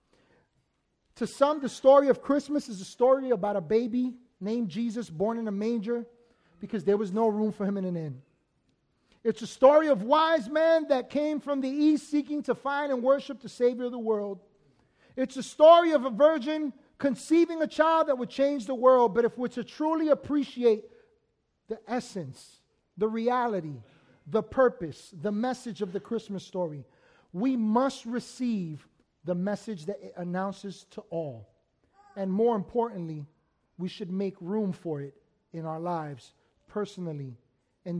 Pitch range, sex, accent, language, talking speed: 175-250 Hz, male, American, English, 165 wpm